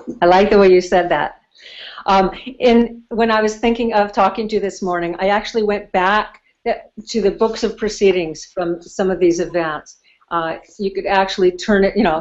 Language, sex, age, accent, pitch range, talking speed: English, female, 50-69, American, 185-220 Hz, 200 wpm